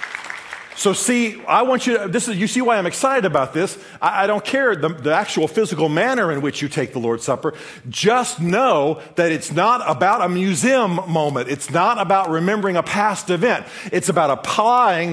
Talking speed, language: 190 wpm, English